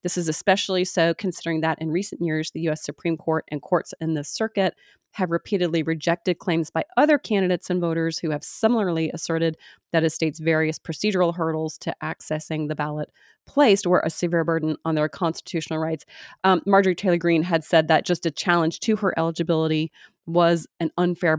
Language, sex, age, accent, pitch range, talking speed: English, female, 30-49, American, 160-180 Hz, 185 wpm